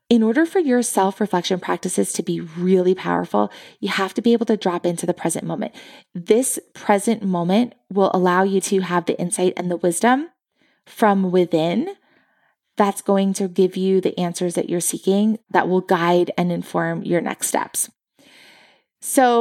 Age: 20-39